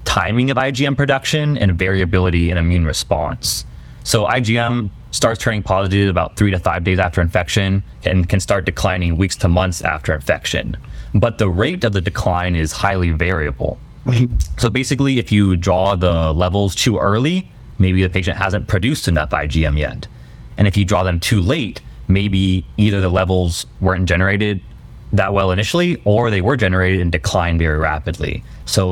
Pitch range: 85-105 Hz